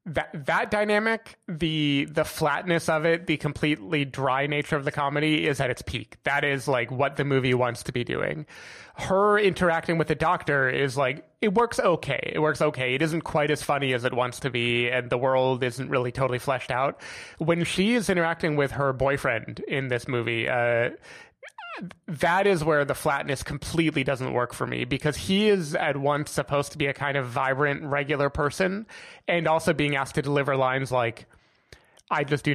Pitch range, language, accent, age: 135-165 Hz, English, American, 30-49